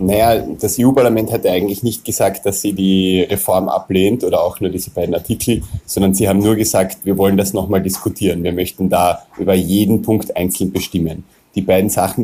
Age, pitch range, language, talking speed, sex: 30-49, 95-110 Hz, German, 190 wpm, male